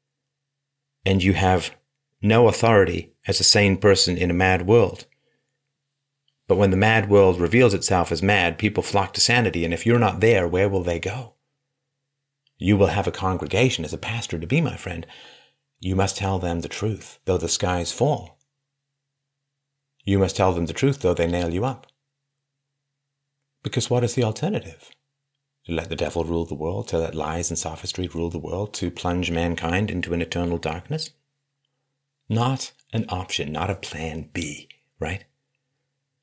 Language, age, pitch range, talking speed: English, 40-59, 95-140 Hz, 170 wpm